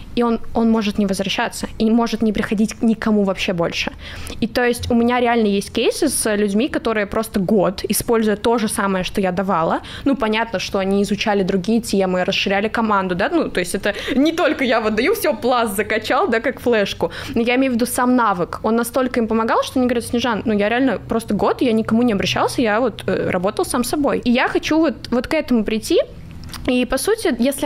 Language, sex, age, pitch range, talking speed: Russian, female, 20-39, 210-255 Hz, 220 wpm